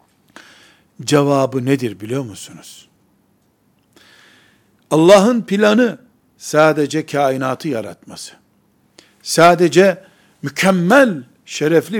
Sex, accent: male, native